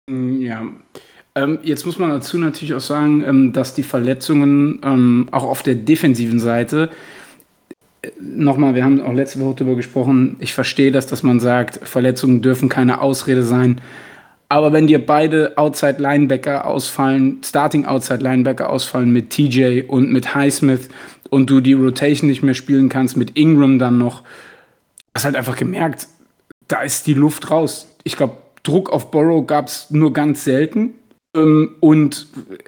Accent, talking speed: German, 145 wpm